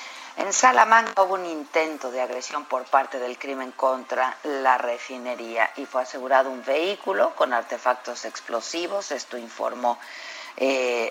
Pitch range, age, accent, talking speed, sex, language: 125-150 Hz, 50-69, Mexican, 135 wpm, female, Spanish